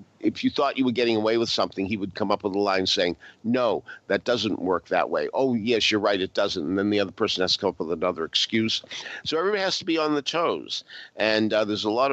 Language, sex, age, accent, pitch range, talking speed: English, male, 50-69, American, 95-125 Hz, 265 wpm